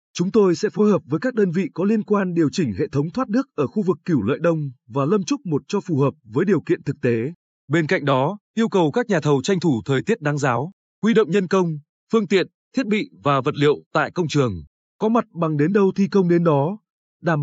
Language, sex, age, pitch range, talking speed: Vietnamese, male, 20-39, 140-195 Hz, 255 wpm